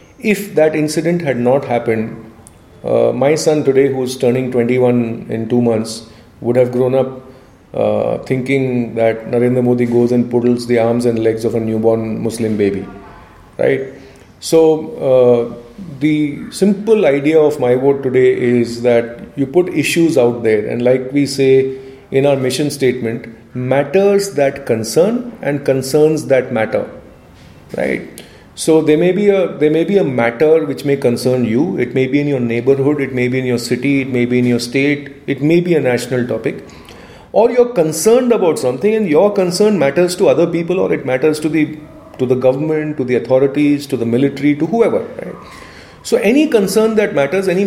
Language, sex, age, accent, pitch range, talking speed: English, male, 30-49, Indian, 120-170 Hz, 180 wpm